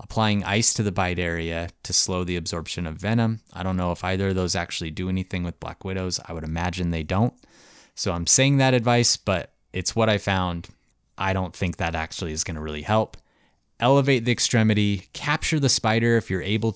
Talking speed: 210 wpm